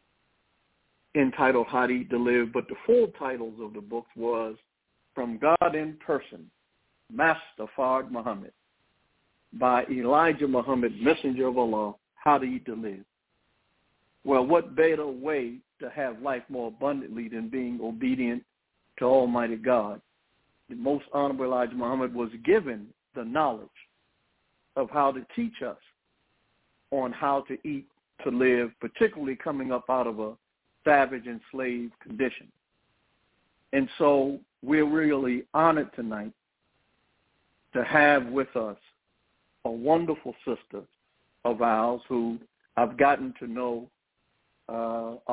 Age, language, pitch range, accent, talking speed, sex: 60-79, English, 120-140 Hz, American, 130 wpm, male